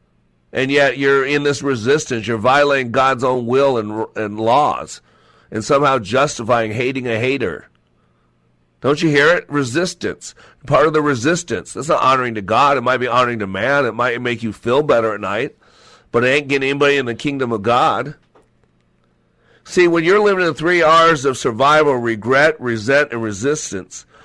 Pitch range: 120-150 Hz